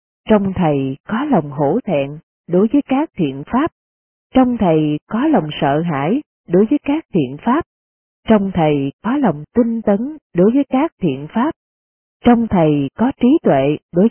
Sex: female